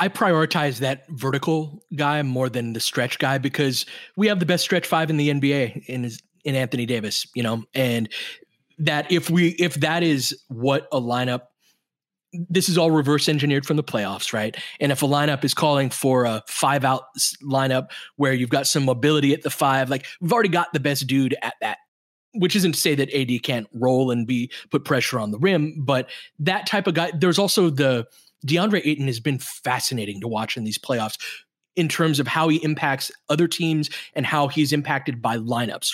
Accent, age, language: American, 20-39, English